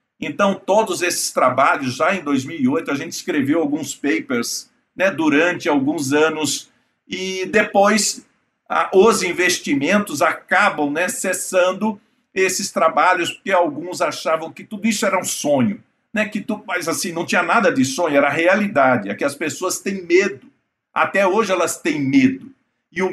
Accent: Brazilian